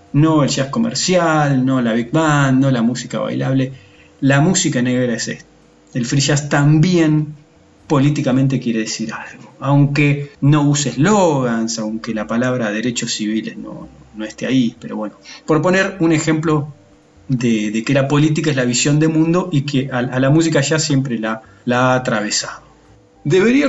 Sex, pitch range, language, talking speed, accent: male, 125-160 Hz, Spanish, 170 wpm, Argentinian